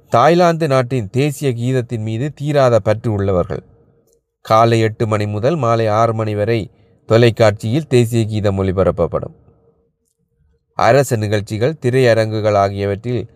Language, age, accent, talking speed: Tamil, 30-49, native, 110 wpm